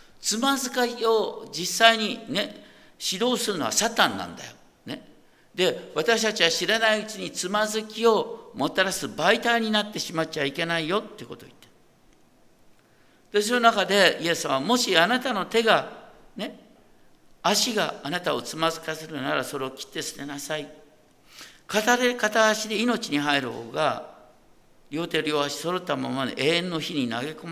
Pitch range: 150-220 Hz